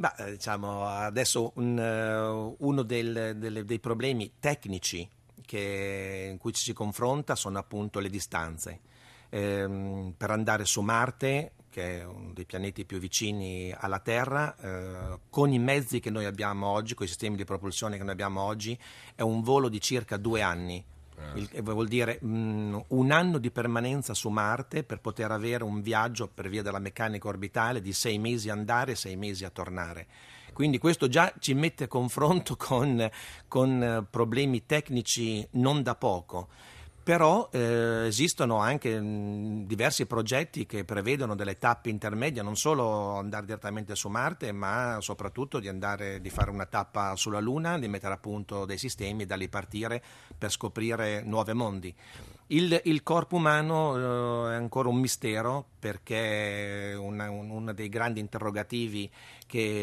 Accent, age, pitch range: native, 40-59, 100-125 Hz